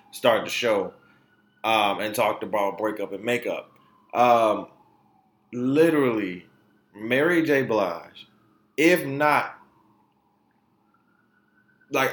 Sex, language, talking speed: male, English, 90 wpm